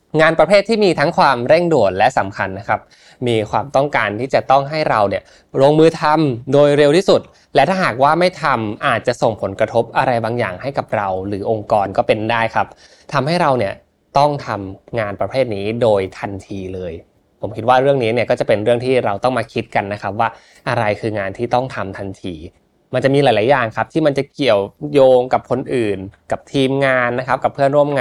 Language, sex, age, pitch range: Thai, male, 20-39, 105-140 Hz